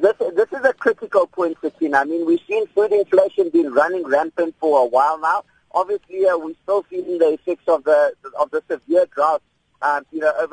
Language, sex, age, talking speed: English, male, 50-69, 215 wpm